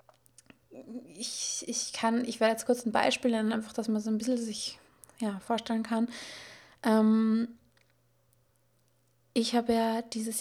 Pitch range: 215-245 Hz